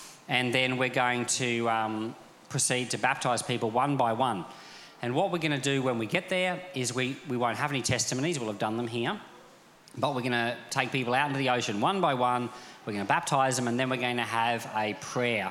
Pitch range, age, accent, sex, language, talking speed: 120-150 Hz, 40-59, Australian, male, English, 235 wpm